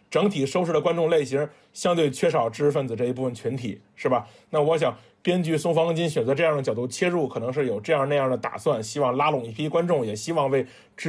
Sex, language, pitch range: male, Chinese, 140-185 Hz